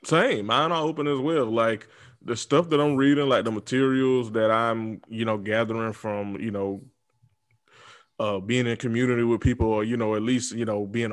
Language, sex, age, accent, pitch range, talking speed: English, male, 20-39, American, 105-145 Hz, 200 wpm